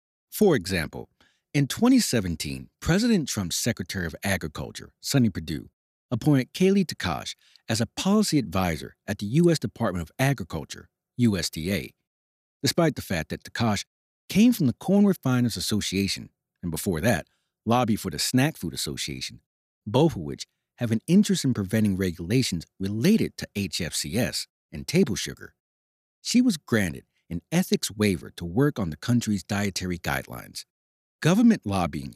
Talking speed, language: 140 wpm, English